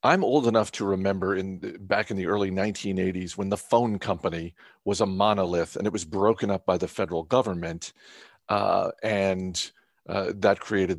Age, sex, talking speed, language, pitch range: 50-69, male, 180 wpm, English, 95-135 Hz